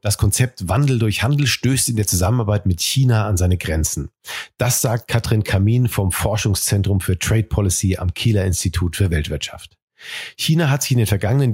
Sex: male